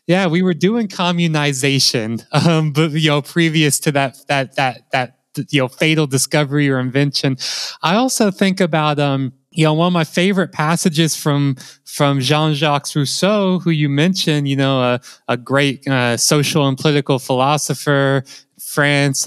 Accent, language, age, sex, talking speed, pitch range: American, English, 20-39, male, 160 wpm, 130-155 Hz